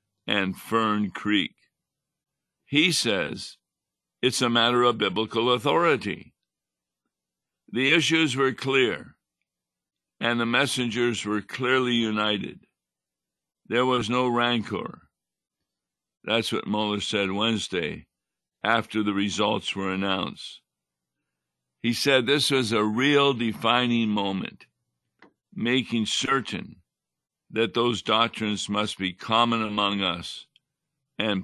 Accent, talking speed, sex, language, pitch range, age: American, 105 wpm, male, English, 100-120 Hz, 60-79